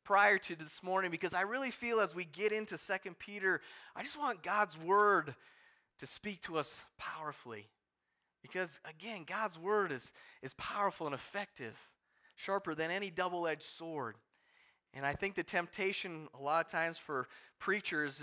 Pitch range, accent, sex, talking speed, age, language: 140-200 Hz, American, male, 160 wpm, 30-49, English